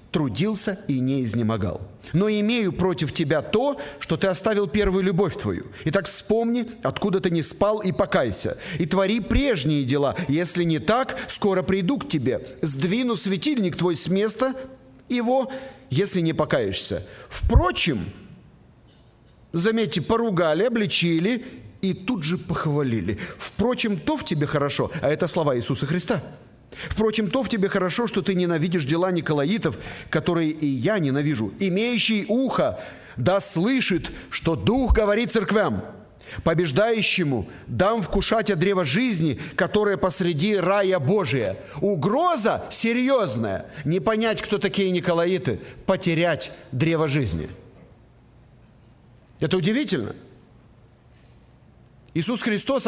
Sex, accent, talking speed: male, native, 120 wpm